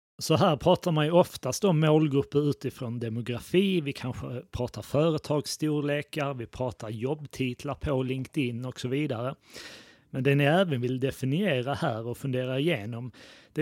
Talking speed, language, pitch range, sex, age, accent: 145 wpm, Swedish, 125-145 Hz, male, 30-49, native